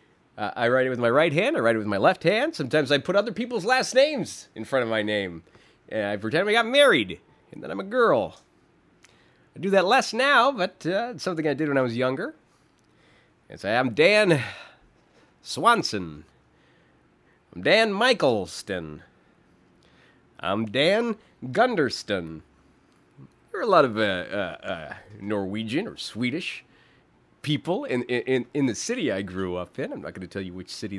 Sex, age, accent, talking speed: male, 30-49, American, 180 wpm